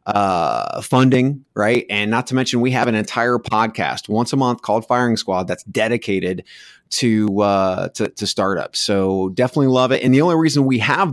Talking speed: 190 wpm